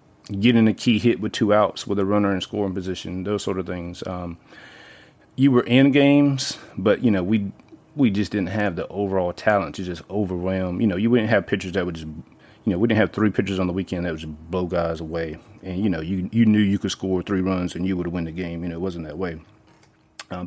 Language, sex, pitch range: English, male, 90-115 Hz